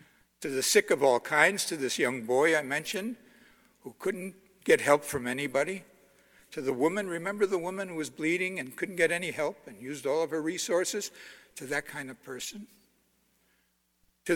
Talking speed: 185 wpm